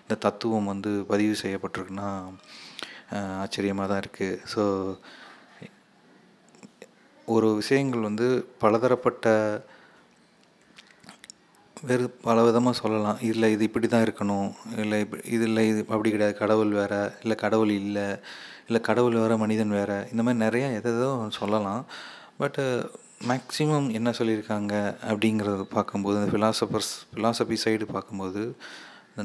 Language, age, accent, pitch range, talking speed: Tamil, 30-49, native, 100-110 Hz, 115 wpm